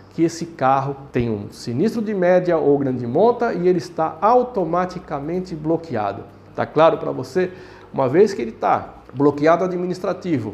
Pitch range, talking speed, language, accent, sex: 140-190 Hz, 155 wpm, Portuguese, Brazilian, male